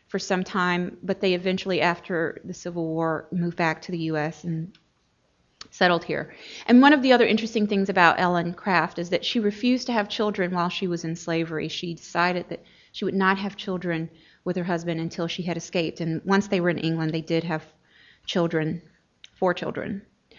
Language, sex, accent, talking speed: English, female, American, 195 wpm